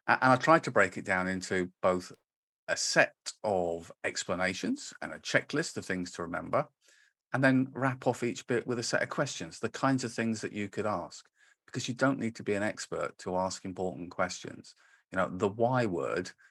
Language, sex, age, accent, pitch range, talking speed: English, male, 40-59, British, 95-130 Hz, 205 wpm